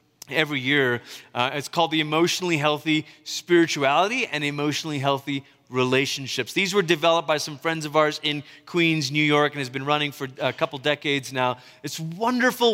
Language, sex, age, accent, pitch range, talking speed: English, male, 30-49, American, 150-190 Hz, 170 wpm